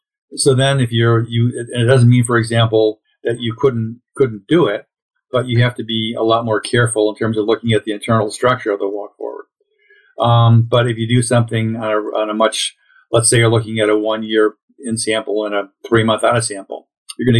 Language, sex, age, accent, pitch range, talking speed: Polish, male, 50-69, American, 110-130 Hz, 235 wpm